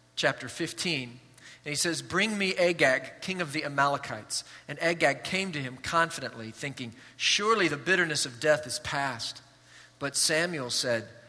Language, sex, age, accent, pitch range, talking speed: English, male, 40-59, American, 125-175 Hz, 155 wpm